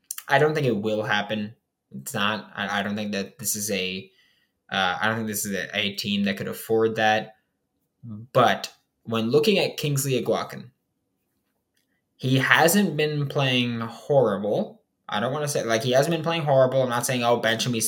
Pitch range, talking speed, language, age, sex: 110-140 Hz, 190 wpm, English, 20-39, male